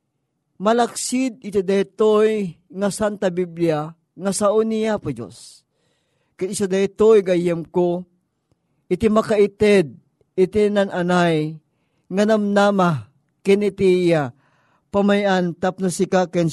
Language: Filipino